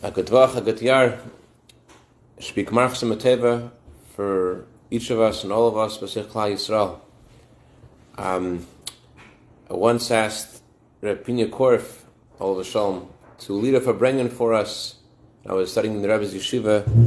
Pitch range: 110-125 Hz